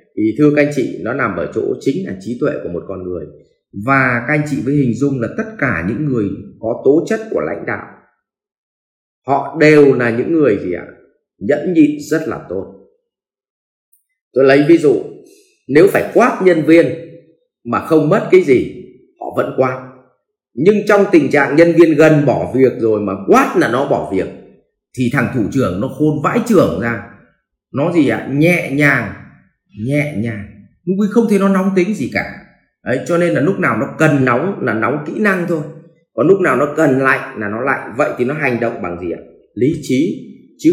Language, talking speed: English, 200 wpm